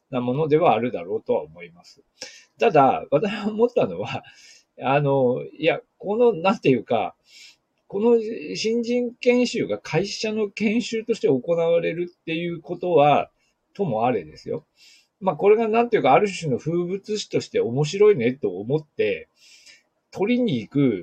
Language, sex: Japanese, male